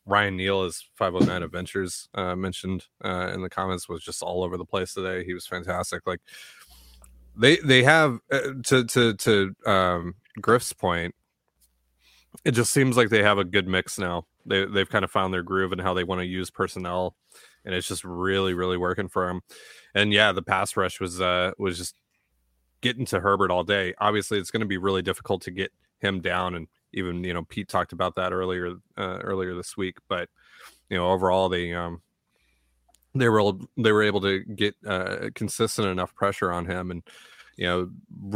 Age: 20-39